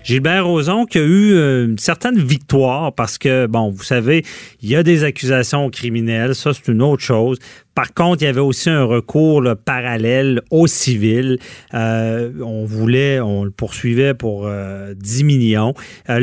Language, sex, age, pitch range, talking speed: French, male, 40-59, 115-150 Hz, 175 wpm